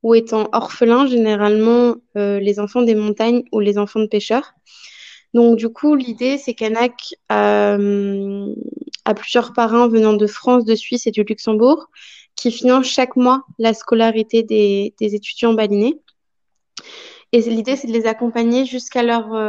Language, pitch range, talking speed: French, 210-240 Hz, 155 wpm